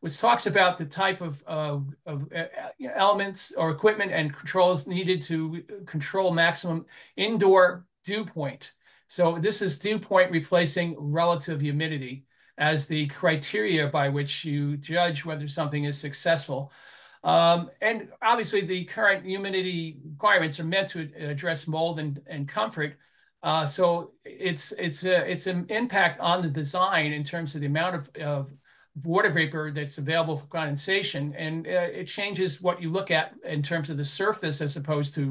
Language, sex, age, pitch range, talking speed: English, male, 40-59, 145-180 Hz, 160 wpm